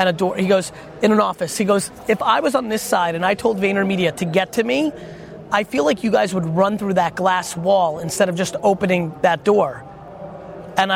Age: 30-49